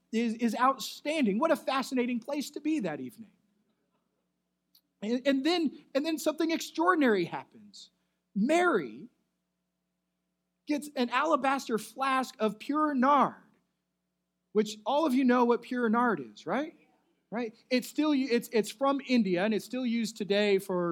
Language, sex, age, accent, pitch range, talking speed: English, male, 30-49, American, 175-265 Hz, 145 wpm